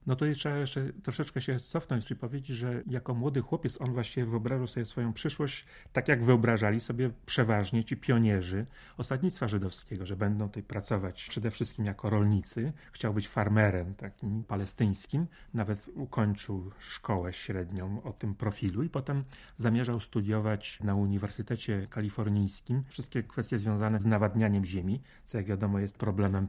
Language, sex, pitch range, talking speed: Polish, male, 105-125 Hz, 150 wpm